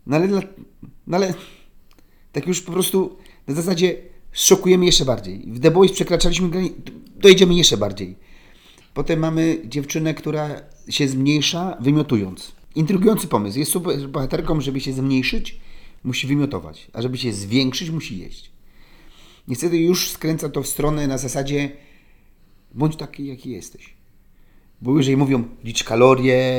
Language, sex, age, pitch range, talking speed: Polish, male, 40-59, 125-155 Hz, 140 wpm